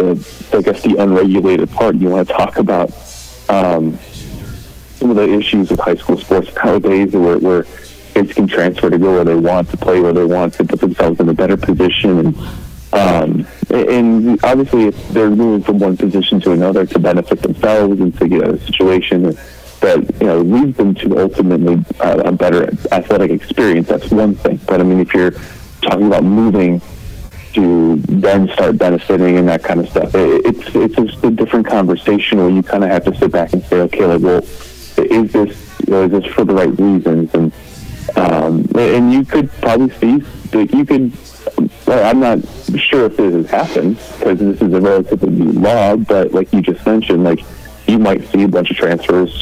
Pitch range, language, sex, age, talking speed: 85-105 Hz, English, male, 30-49, 200 wpm